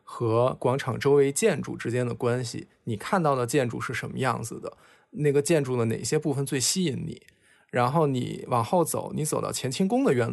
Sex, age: male, 20-39